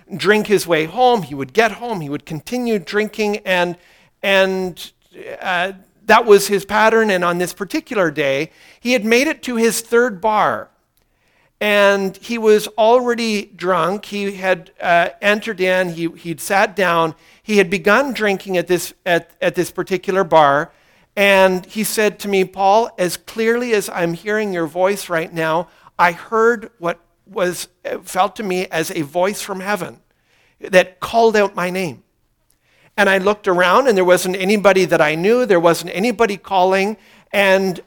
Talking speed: 165 wpm